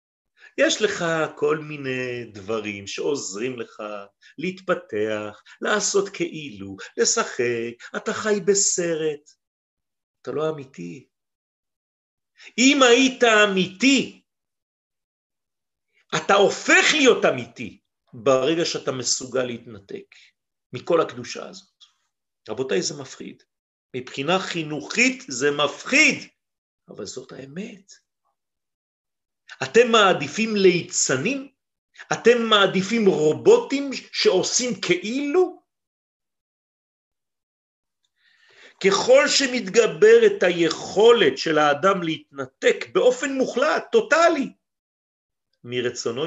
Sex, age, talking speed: male, 50-69, 80 wpm